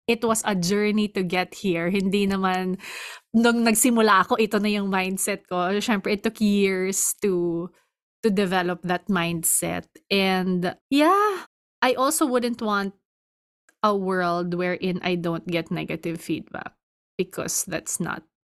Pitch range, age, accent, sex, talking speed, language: 180-220 Hz, 20-39, native, female, 140 wpm, Filipino